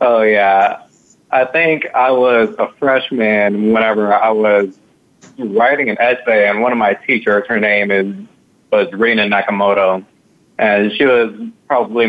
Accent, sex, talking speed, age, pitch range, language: American, male, 145 wpm, 30-49, 95-115 Hz, English